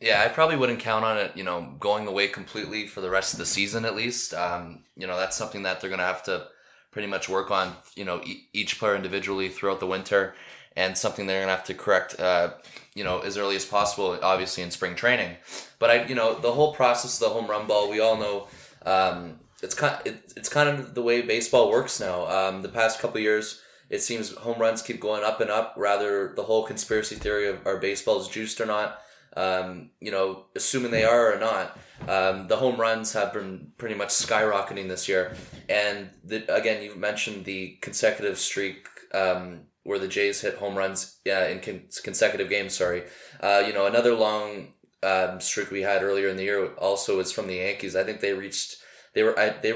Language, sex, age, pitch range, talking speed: English, male, 20-39, 95-115 Hz, 215 wpm